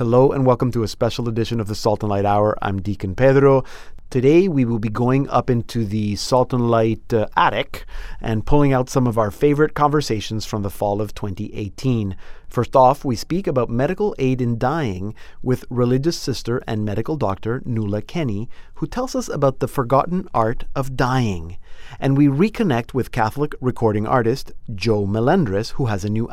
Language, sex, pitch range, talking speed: English, male, 110-135 Hz, 185 wpm